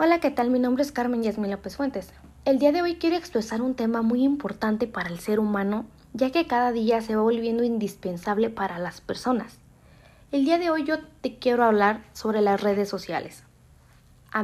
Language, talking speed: Amharic, 200 wpm